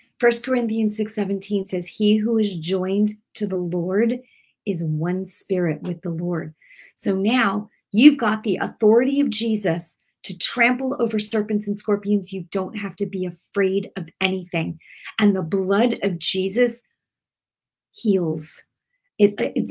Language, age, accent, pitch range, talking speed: English, 40-59, American, 180-220 Hz, 145 wpm